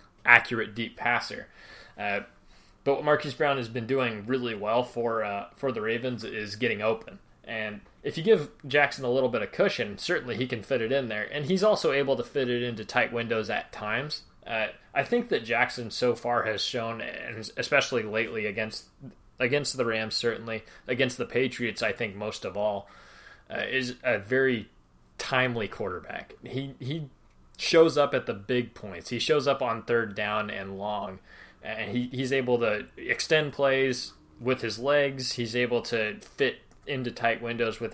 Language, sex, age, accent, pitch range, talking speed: English, male, 20-39, American, 110-130 Hz, 180 wpm